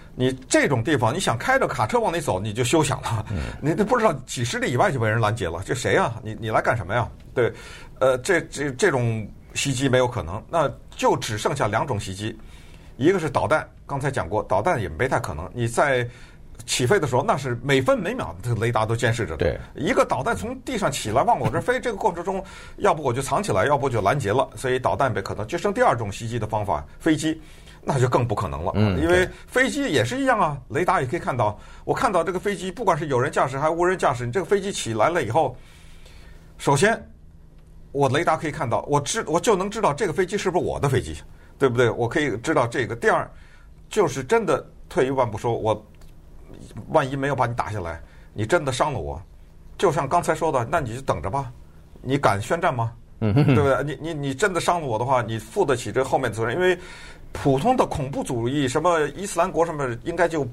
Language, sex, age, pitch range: Chinese, male, 50-69, 110-170 Hz